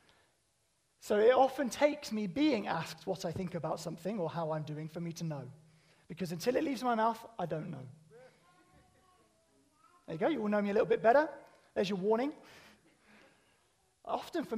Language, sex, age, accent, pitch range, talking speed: English, male, 20-39, British, 180-250 Hz, 185 wpm